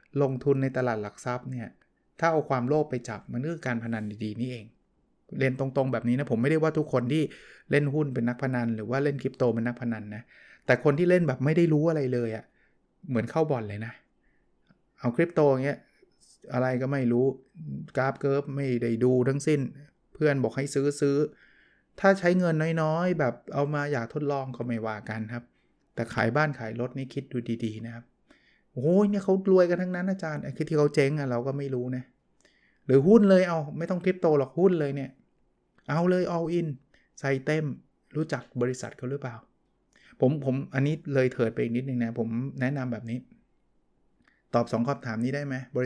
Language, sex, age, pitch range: Thai, male, 20-39, 120-150 Hz